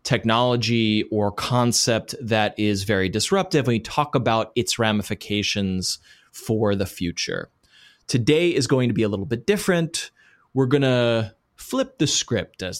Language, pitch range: English, 105-140 Hz